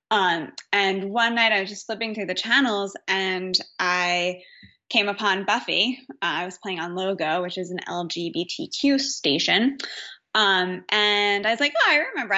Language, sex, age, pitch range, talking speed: English, female, 20-39, 185-230 Hz, 170 wpm